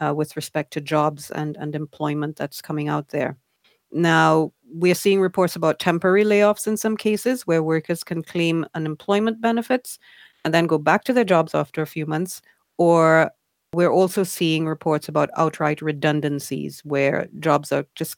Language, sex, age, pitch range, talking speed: Finnish, female, 40-59, 155-195 Hz, 170 wpm